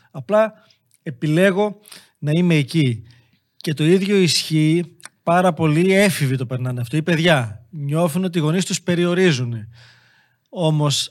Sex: male